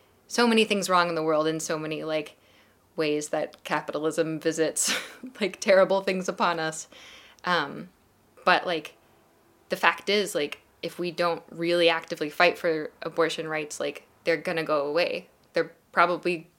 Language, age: English, 20-39